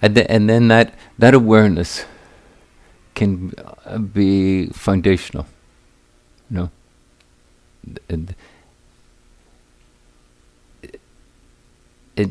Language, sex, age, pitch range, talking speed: English, male, 50-69, 70-100 Hz, 70 wpm